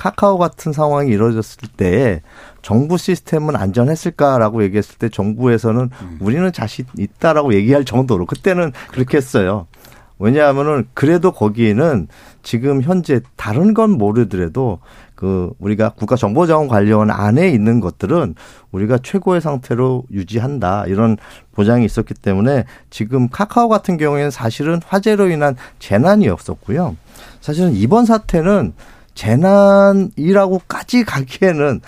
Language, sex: Korean, male